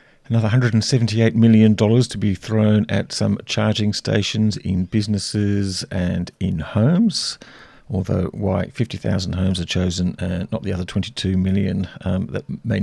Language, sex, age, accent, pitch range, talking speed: English, male, 40-59, British, 90-105 Hz, 140 wpm